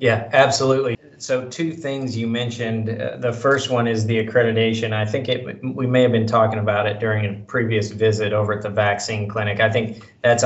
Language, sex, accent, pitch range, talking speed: English, male, American, 105-115 Hz, 205 wpm